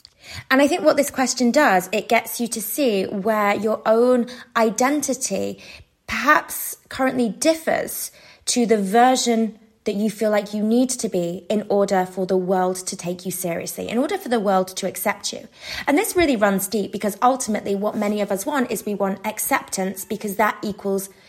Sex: female